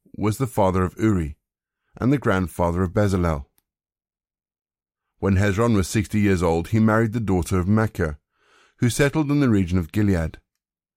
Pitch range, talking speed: 90-115 Hz, 160 wpm